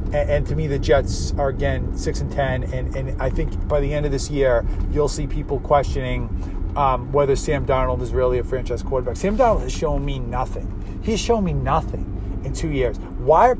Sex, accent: male, American